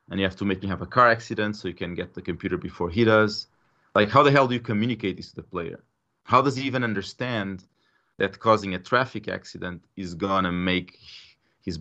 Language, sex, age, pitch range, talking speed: English, male, 30-49, 95-115 Hz, 225 wpm